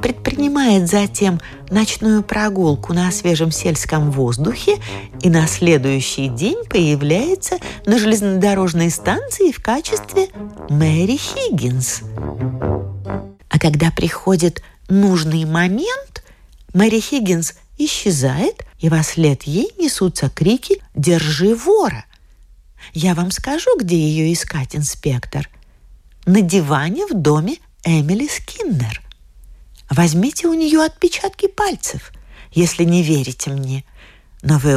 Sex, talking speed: female, 105 wpm